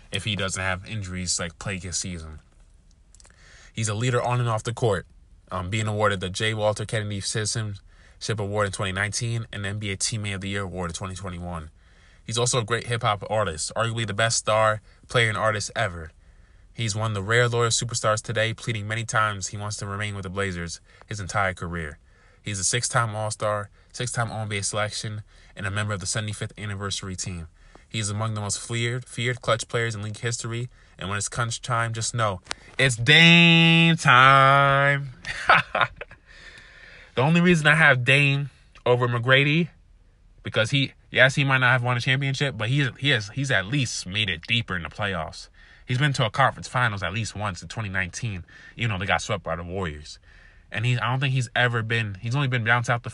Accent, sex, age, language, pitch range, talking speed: American, male, 20-39, English, 95-120 Hz, 190 wpm